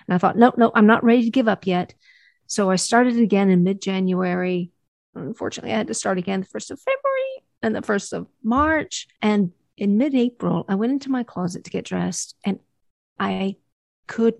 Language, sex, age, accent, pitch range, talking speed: English, female, 50-69, American, 185-240 Hz, 195 wpm